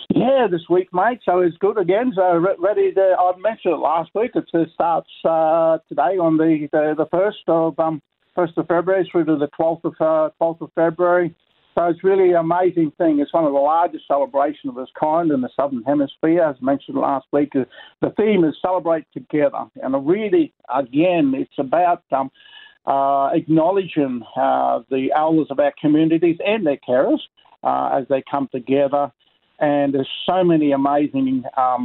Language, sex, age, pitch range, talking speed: English, male, 50-69, 140-175 Hz, 180 wpm